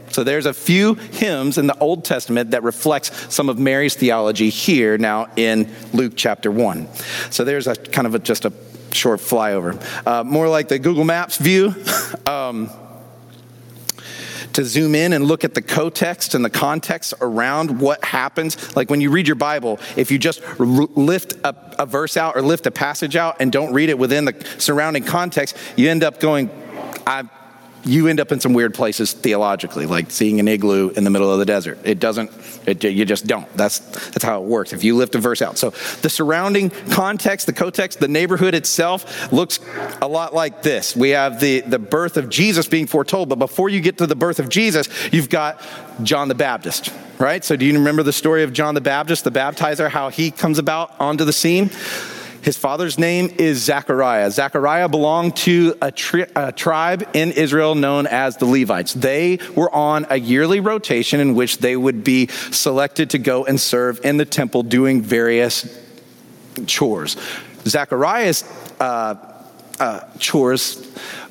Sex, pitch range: male, 130-165 Hz